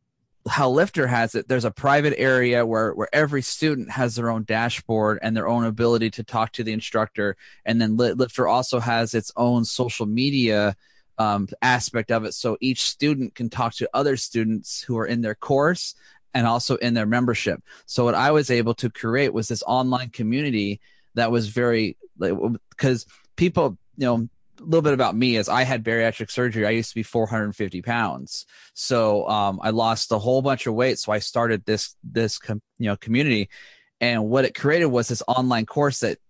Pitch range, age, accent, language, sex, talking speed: 110-125 Hz, 30-49, American, English, male, 190 wpm